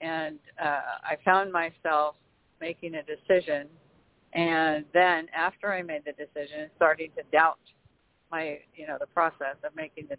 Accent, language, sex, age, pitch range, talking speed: American, English, female, 50-69, 150-180 Hz, 155 wpm